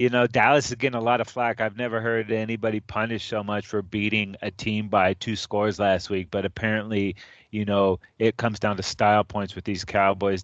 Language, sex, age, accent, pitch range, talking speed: English, male, 30-49, American, 100-120 Hz, 220 wpm